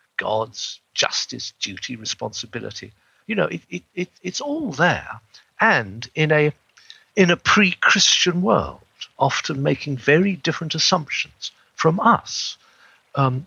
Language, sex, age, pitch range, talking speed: English, male, 50-69, 120-190 Hz, 110 wpm